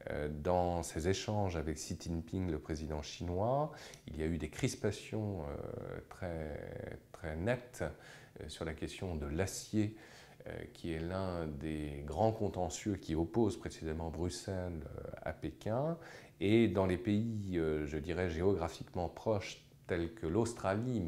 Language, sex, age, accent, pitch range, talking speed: French, male, 40-59, French, 80-110 Hz, 130 wpm